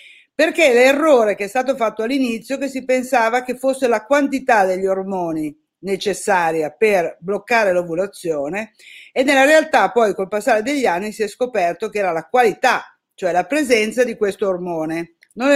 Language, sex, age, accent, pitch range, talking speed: Italian, female, 50-69, native, 190-260 Hz, 160 wpm